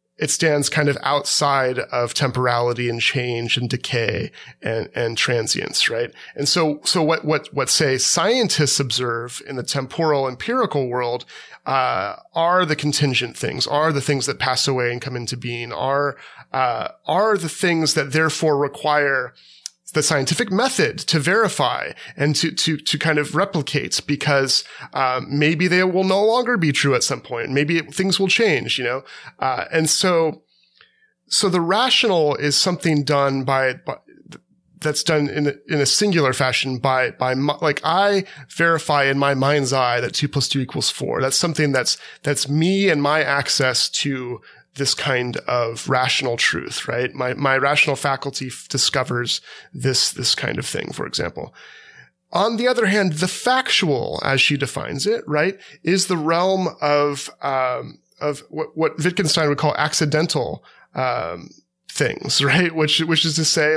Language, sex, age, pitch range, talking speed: English, male, 30-49, 135-165 Hz, 165 wpm